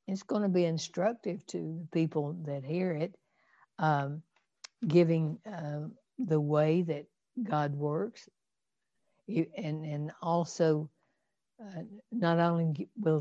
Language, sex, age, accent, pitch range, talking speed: English, female, 60-79, American, 155-185 Hz, 125 wpm